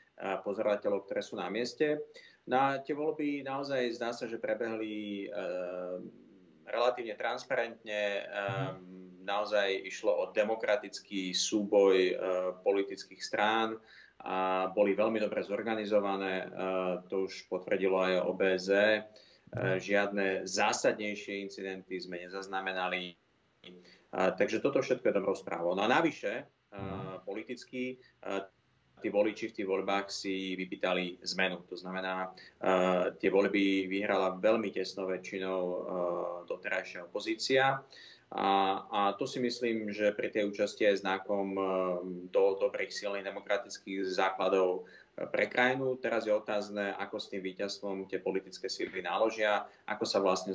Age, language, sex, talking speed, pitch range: 30-49, Slovak, male, 130 wpm, 95-110 Hz